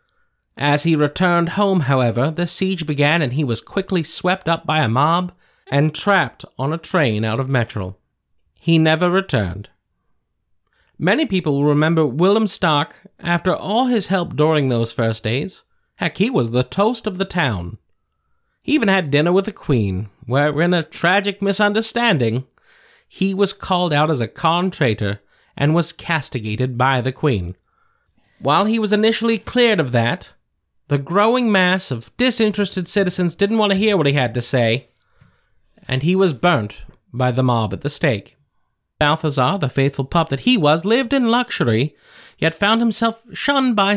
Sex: male